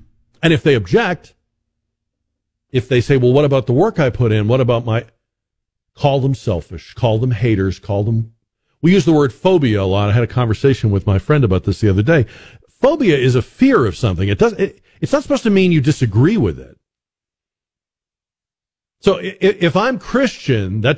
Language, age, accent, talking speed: English, 50-69, American, 195 wpm